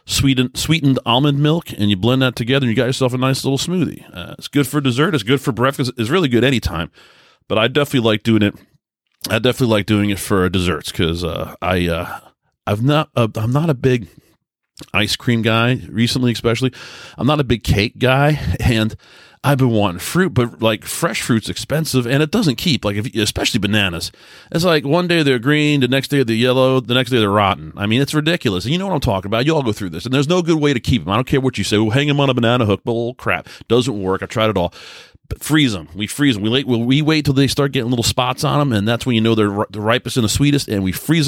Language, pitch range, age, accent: English, 105-140 Hz, 30-49, American